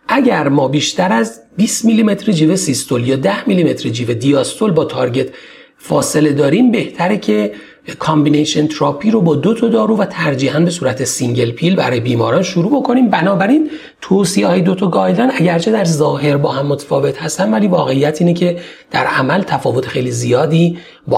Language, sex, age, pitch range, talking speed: Persian, male, 40-59, 150-230 Hz, 165 wpm